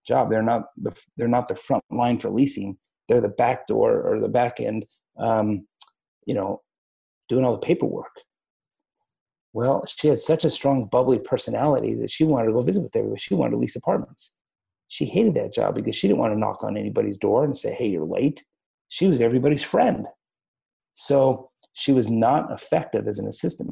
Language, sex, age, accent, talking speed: English, male, 30-49, American, 195 wpm